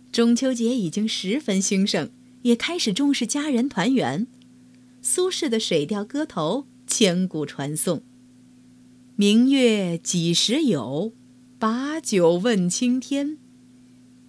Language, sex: Chinese, female